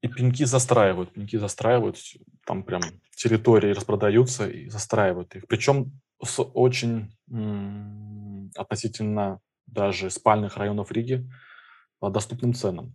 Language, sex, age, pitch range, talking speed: Russian, male, 20-39, 100-120 Hz, 100 wpm